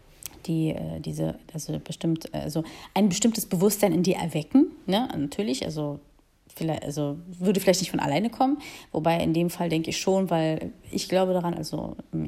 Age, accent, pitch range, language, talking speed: 30-49, German, 160-205 Hz, German, 175 wpm